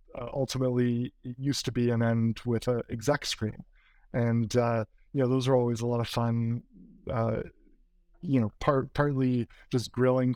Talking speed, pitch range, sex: 160 wpm, 120-135 Hz, male